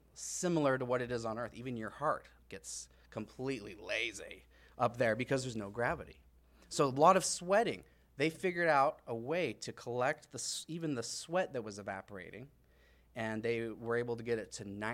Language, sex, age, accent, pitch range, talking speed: English, male, 30-49, American, 100-135 Hz, 185 wpm